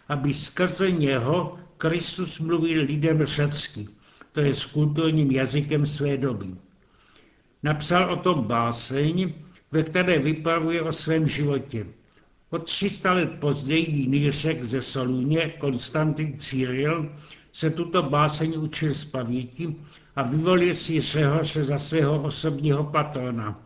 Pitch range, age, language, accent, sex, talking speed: 140-165 Hz, 70-89, Czech, native, male, 120 wpm